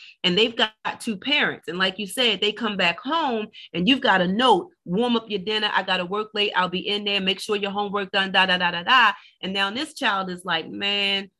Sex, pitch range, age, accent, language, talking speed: female, 185-235 Hz, 30-49, American, English, 255 wpm